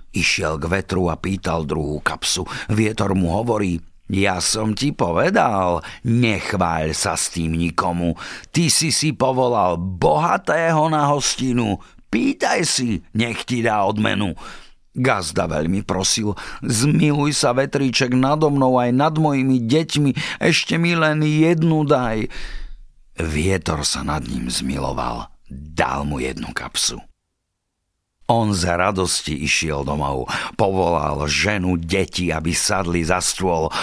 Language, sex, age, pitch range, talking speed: Slovak, male, 50-69, 85-130 Hz, 125 wpm